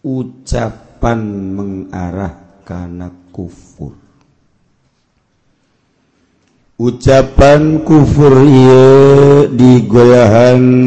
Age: 50-69